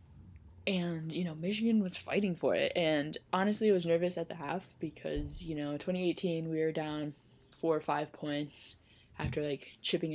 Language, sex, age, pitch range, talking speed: English, female, 10-29, 135-165 Hz, 175 wpm